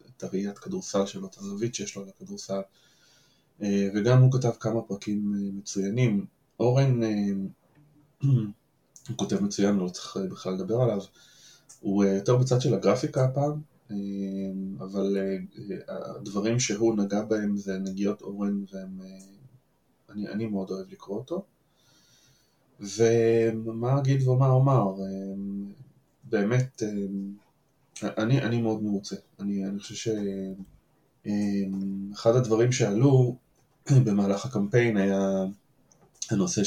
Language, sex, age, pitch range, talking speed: Hebrew, male, 20-39, 100-120 Hz, 100 wpm